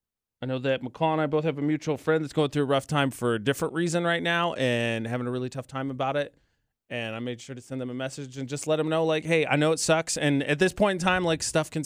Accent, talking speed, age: American, 305 wpm, 30-49